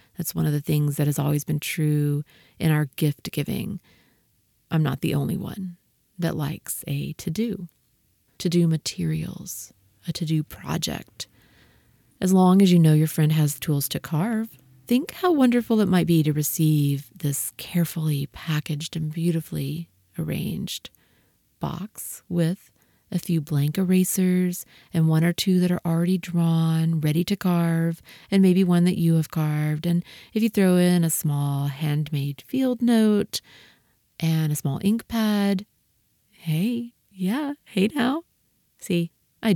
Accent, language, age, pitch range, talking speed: American, English, 30-49, 155-195 Hz, 150 wpm